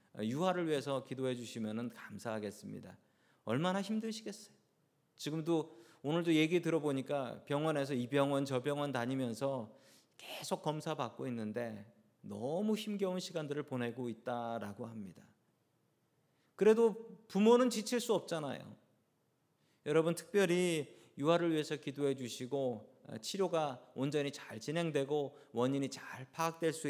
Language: Korean